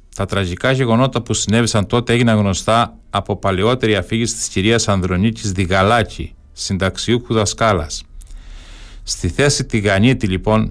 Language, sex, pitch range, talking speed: Greek, male, 100-115 Hz, 120 wpm